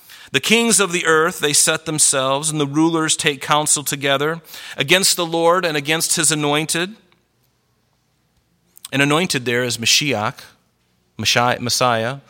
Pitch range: 130-170 Hz